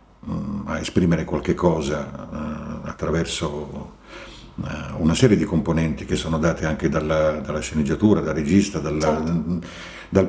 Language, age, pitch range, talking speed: Italian, 50-69, 80-105 Hz, 135 wpm